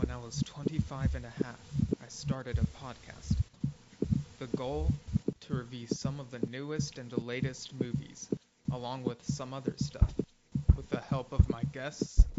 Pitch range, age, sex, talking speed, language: 115-135 Hz, 20-39, male, 160 wpm, English